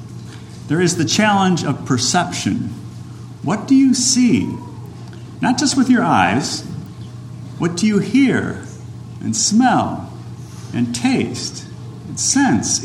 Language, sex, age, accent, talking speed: English, male, 50-69, American, 115 wpm